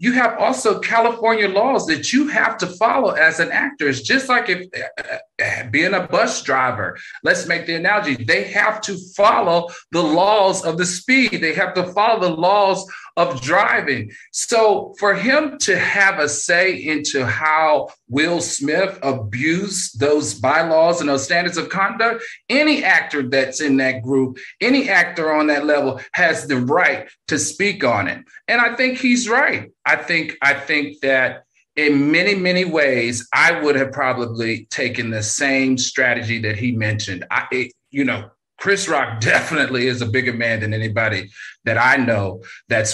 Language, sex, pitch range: English, male, 125-185 Hz